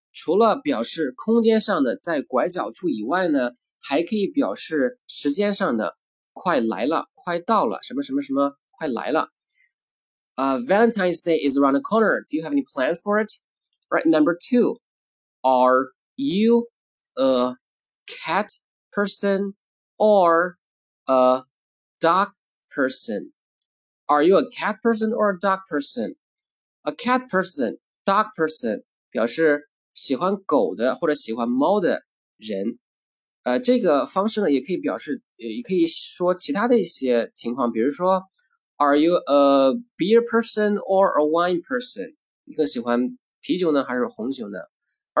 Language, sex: Chinese, male